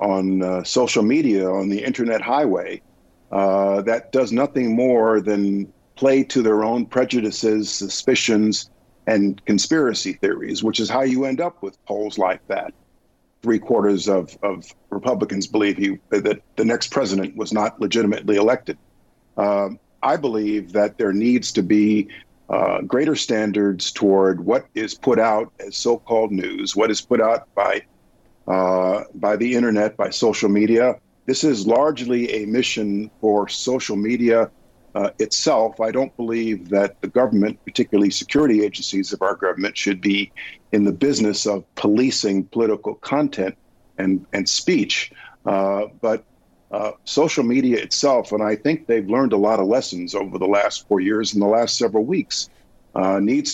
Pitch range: 100-115 Hz